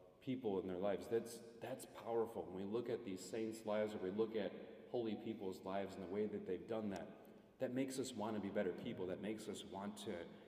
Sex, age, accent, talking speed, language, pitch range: male, 30-49, American, 235 wpm, English, 90-110 Hz